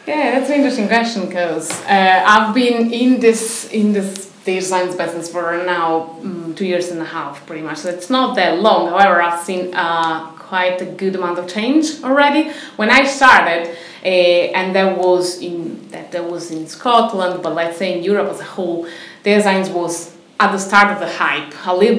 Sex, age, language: female, 20-39, English